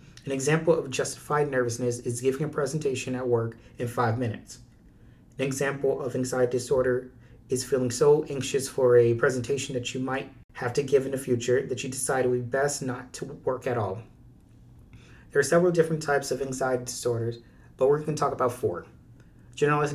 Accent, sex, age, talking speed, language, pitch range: American, male, 30-49, 190 wpm, English, 120-140 Hz